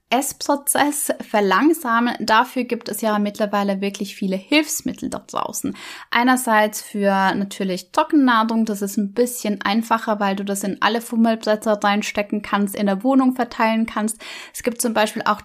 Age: 20-39